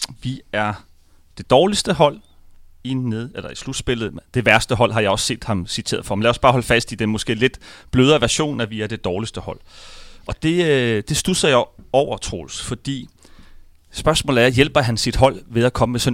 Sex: male